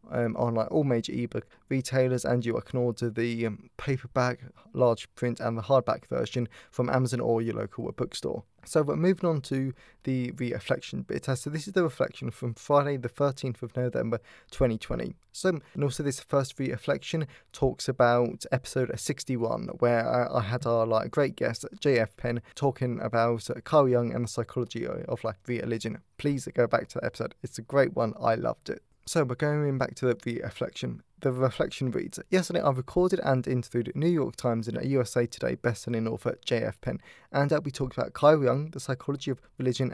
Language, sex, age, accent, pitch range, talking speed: English, male, 20-39, British, 120-140 Hz, 190 wpm